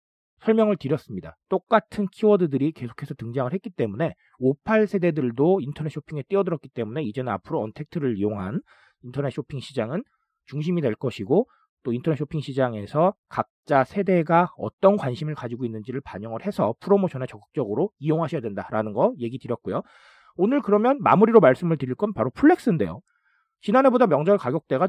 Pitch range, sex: 140-210 Hz, male